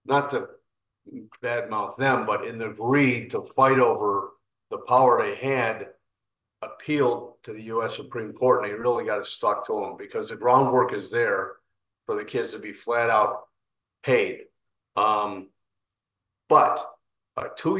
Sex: male